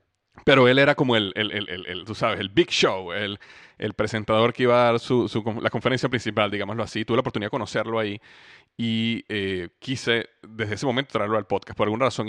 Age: 30-49